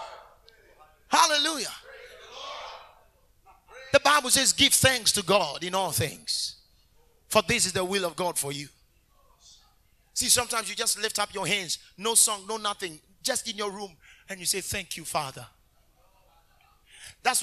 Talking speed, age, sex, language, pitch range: 150 wpm, 30-49, male, English, 160-230 Hz